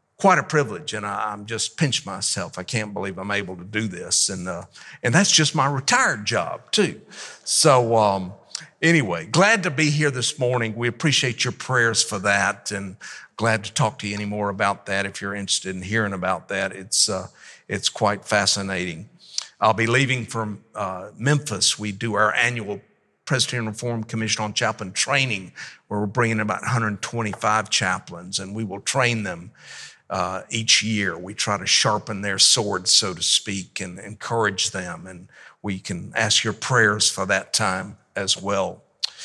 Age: 50-69